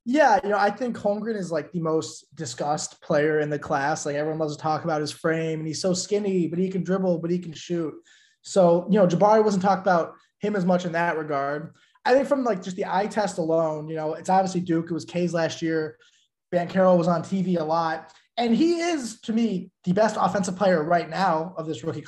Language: English